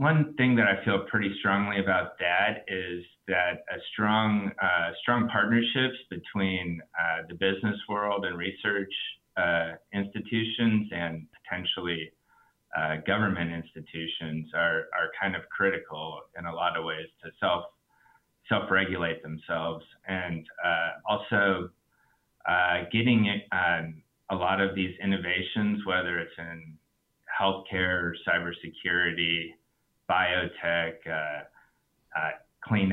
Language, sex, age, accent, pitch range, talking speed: English, male, 30-49, American, 85-100 Hz, 120 wpm